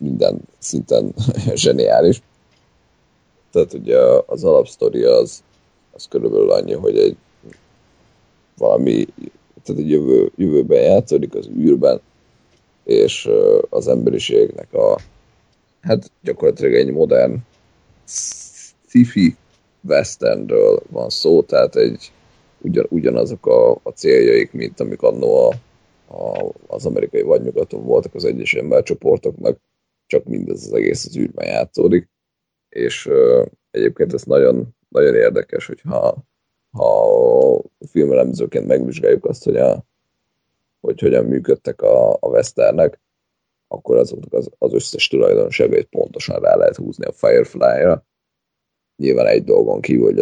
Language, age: Hungarian, 30-49